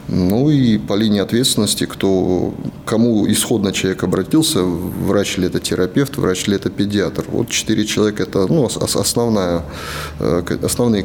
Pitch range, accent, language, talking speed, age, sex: 95-130 Hz, native, Russian, 120 wpm, 30-49, male